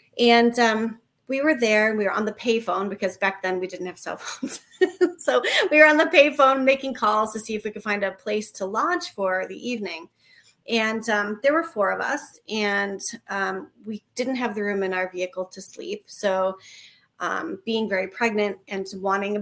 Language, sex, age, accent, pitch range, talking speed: English, female, 30-49, American, 200-260 Hz, 205 wpm